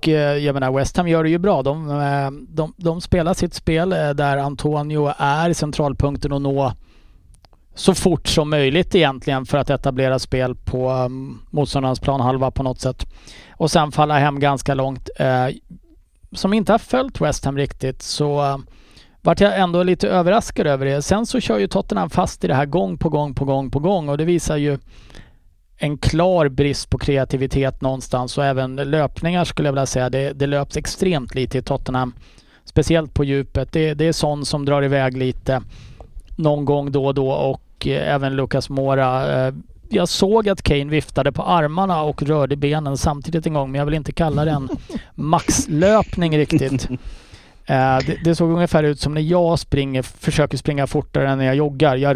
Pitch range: 135-160 Hz